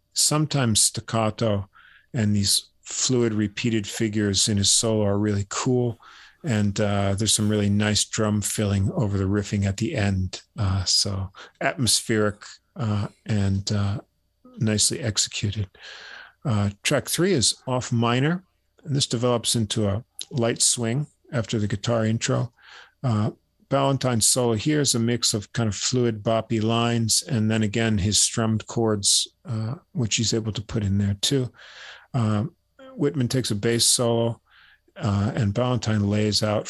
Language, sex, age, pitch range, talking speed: English, male, 50-69, 105-120 Hz, 150 wpm